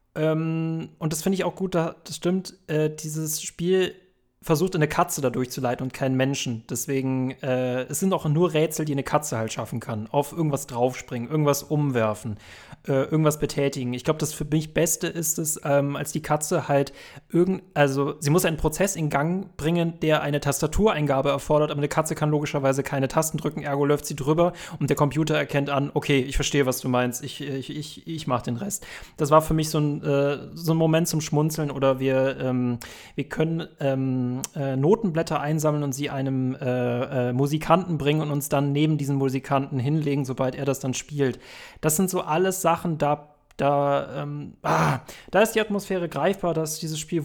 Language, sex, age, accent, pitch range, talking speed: German, male, 30-49, German, 135-160 Hz, 190 wpm